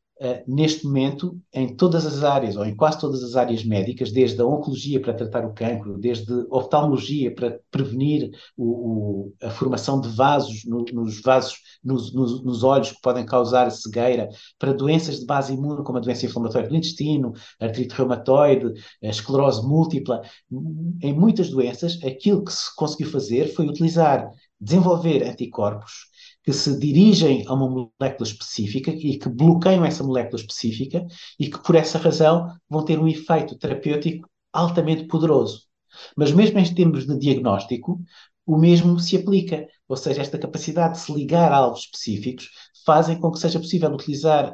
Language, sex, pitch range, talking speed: English, male, 125-160 Hz, 155 wpm